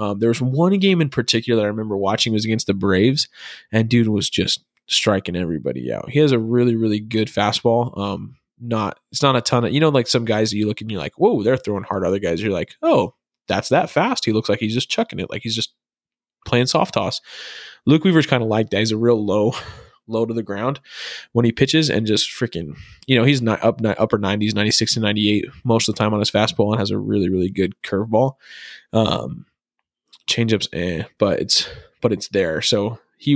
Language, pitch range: English, 105-120 Hz